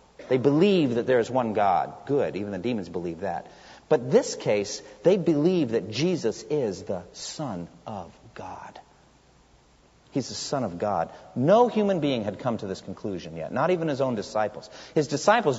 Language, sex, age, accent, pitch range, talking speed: English, male, 50-69, American, 110-155 Hz, 175 wpm